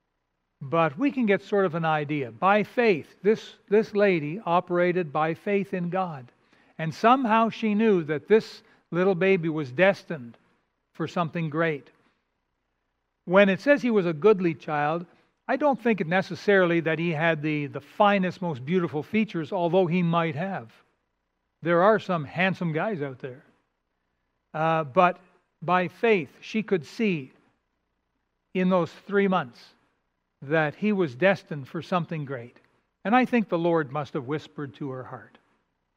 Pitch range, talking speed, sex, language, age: 150-195 Hz, 155 wpm, male, English, 60-79